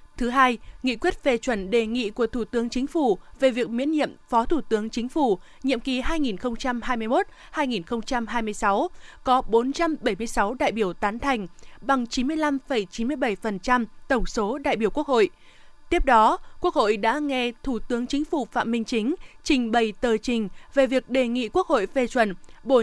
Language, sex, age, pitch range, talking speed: Vietnamese, female, 20-39, 225-285 Hz, 170 wpm